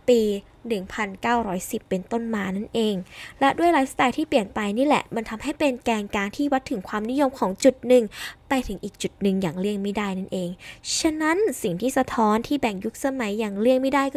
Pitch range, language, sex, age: 205-265 Hz, Thai, female, 10-29